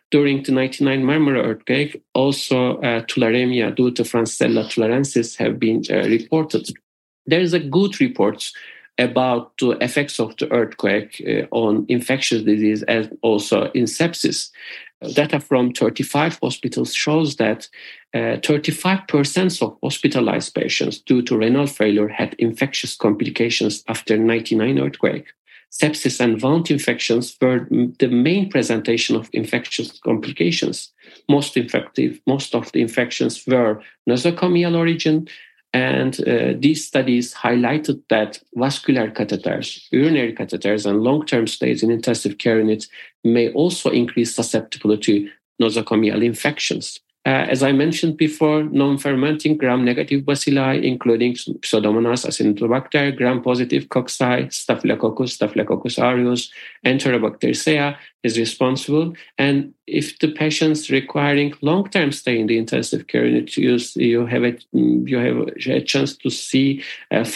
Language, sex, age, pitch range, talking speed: English, male, 50-69, 115-145 Hz, 130 wpm